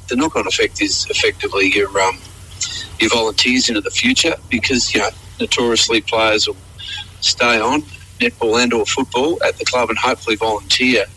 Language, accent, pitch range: English, Australian, 100-150 Hz